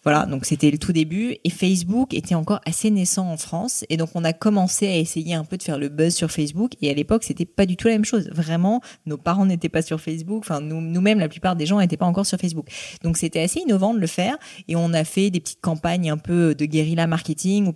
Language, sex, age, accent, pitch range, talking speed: French, female, 30-49, French, 150-185 Hz, 265 wpm